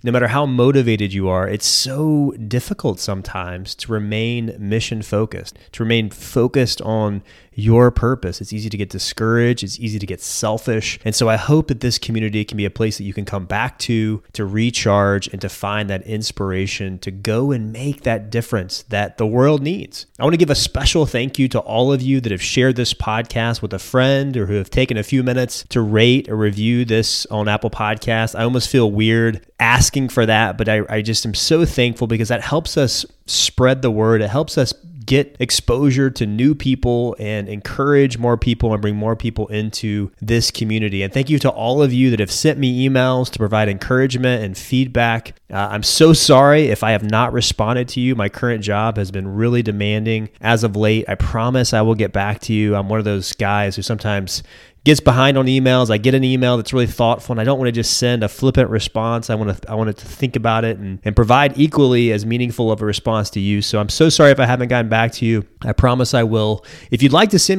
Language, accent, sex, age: English, American, male, 30-49